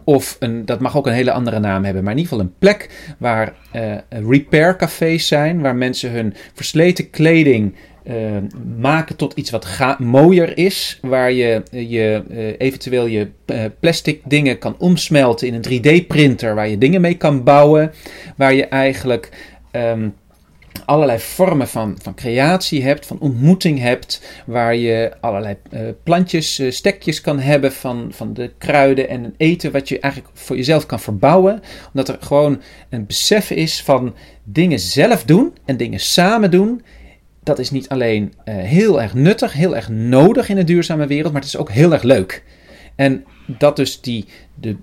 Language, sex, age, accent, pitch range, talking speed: Dutch, male, 40-59, Dutch, 115-160 Hz, 175 wpm